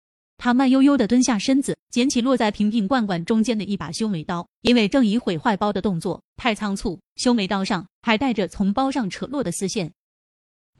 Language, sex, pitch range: Chinese, female, 190-250 Hz